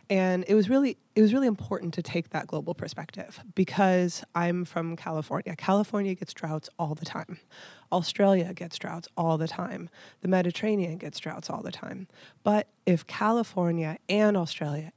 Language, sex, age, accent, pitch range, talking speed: English, female, 20-39, American, 165-200 Hz, 165 wpm